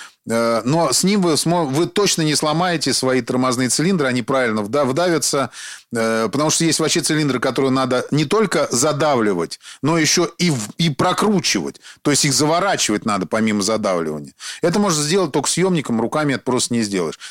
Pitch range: 135-185 Hz